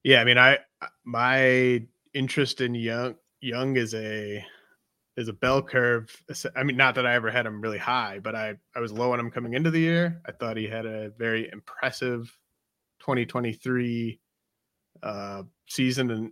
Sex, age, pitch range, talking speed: male, 30-49, 110-130 Hz, 175 wpm